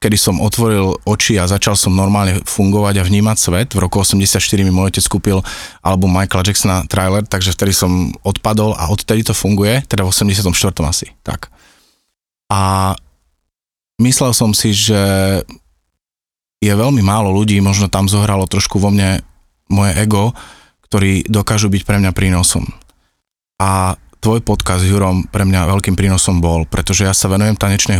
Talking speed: 160 wpm